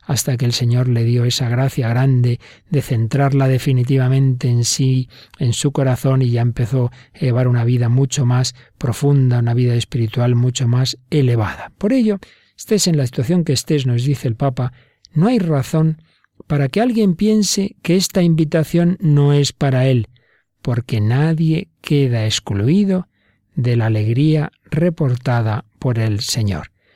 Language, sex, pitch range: Spanish, male, 125-155 Hz